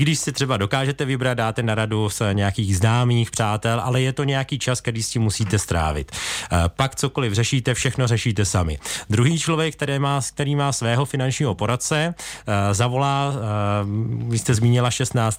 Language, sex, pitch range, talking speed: Czech, male, 110-125 Hz, 160 wpm